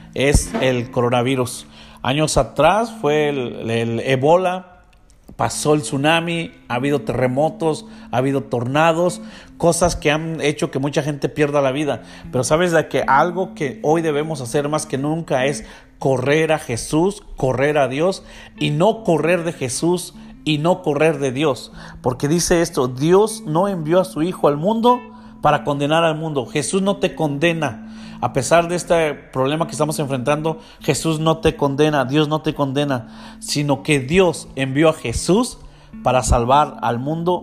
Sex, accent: male, Mexican